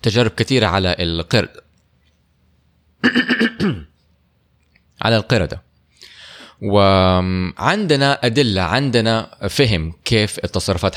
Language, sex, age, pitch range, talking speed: Arabic, male, 20-39, 95-125 Hz, 65 wpm